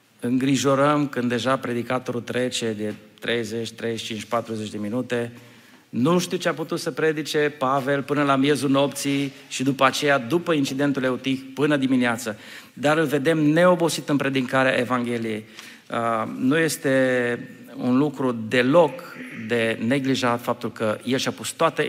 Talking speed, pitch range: 140 wpm, 120-170 Hz